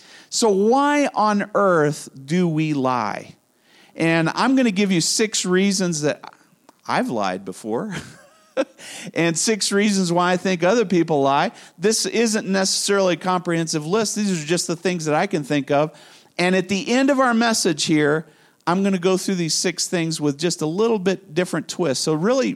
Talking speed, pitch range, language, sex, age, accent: 185 wpm, 150-205 Hz, English, male, 40-59, American